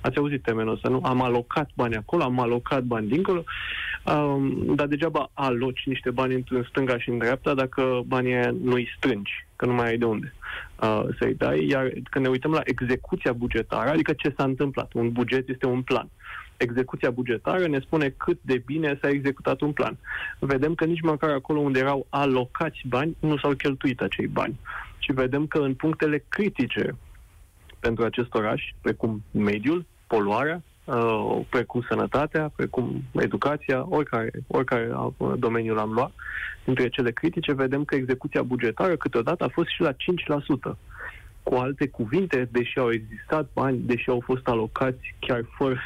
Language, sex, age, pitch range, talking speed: Romanian, male, 20-39, 120-145 Hz, 165 wpm